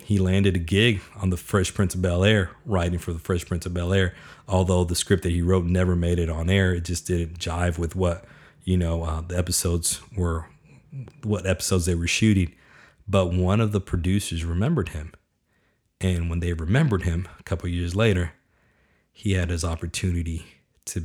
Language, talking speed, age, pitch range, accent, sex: English, 190 wpm, 40-59, 85-105 Hz, American, male